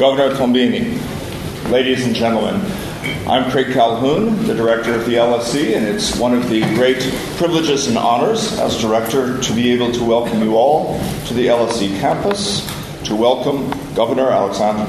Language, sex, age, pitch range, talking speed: English, male, 50-69, 105-125 Hz, 155 wpm